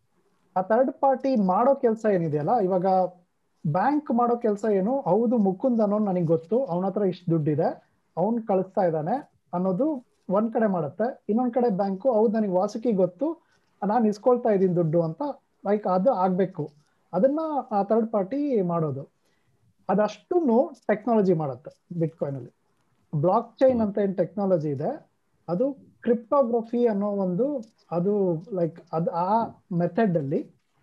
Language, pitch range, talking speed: Kannada, 180-240 Hz, 130 wpm